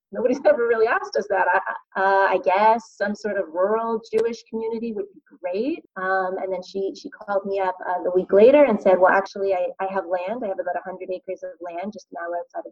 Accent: American